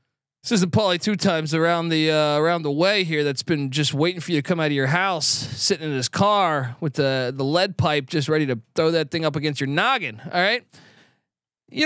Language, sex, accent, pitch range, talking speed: English, male, American, 150-210 Hz, 240 wpm